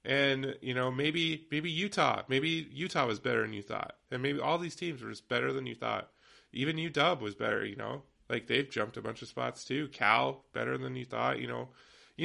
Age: 20-39